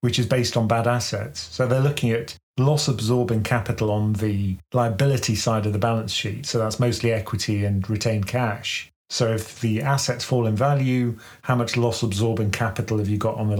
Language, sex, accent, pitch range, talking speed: English, male, British, 110-125 Hz, 190 wpm